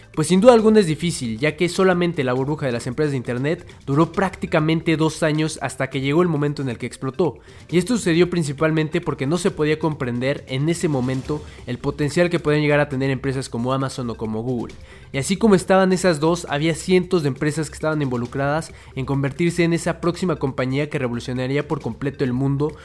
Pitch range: 130-165 Hz